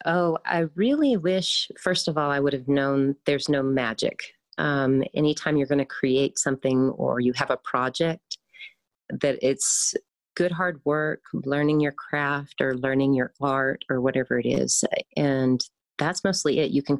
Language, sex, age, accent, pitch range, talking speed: English, female, 30-49, American, 130-150 Hz, 170 wpm